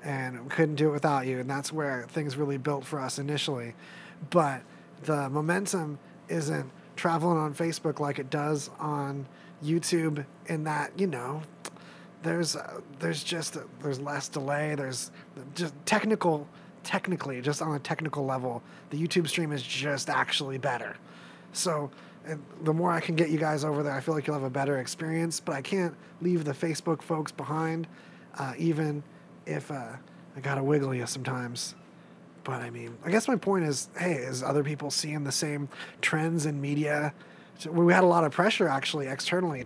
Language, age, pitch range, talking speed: English, 30-49, 140-165 Hz, 180 wpm